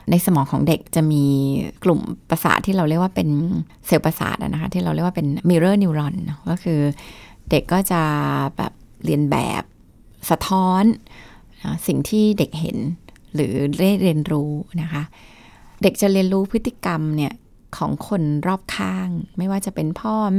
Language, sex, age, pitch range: Thai, female, 20-39, 150-195 Hz